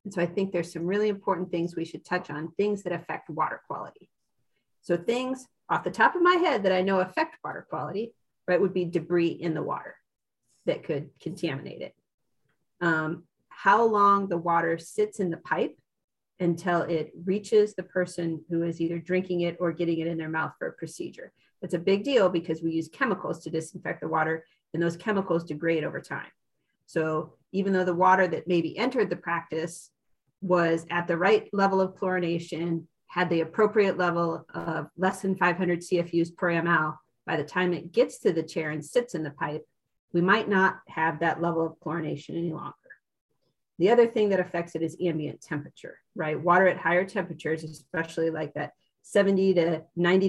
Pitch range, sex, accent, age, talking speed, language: 165-190 Hz, female, American, 40-59, 190 wpm, English